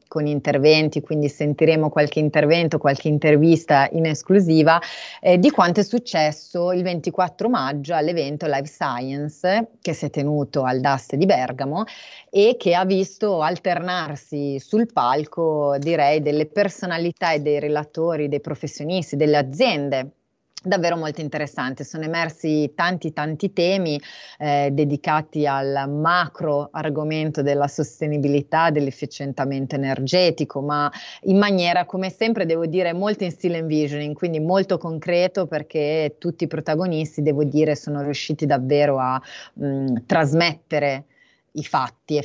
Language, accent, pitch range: Italian, native, 145-170 Hz